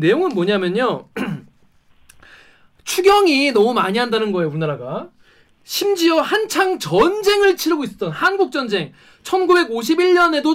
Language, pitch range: Korean, 205-325 Hz